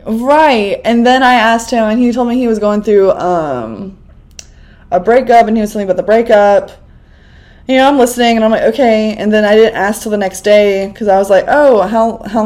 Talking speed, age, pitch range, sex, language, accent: 235 wpm, 20-39, 180-220 Hz, female, English, American